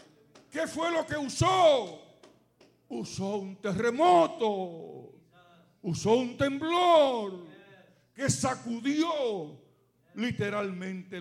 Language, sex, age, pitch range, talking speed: English, male, 60-79, 125-190 Hz, 75 wpm